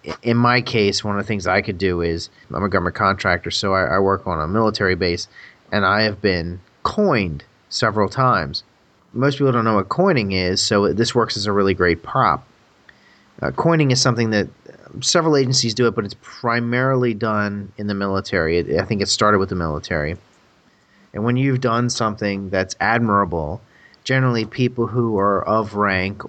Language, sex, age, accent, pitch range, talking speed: English, male, 30-49, American, 95-120 Hz, 185 wpm